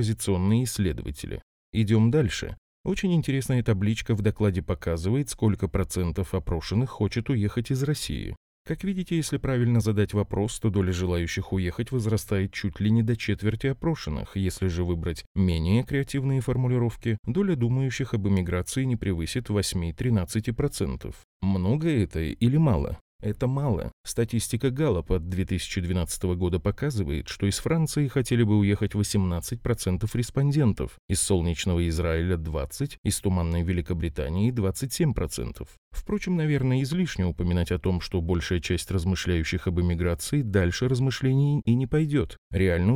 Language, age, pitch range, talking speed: Russian, 30-49, 90-125 Hz, 130 wpm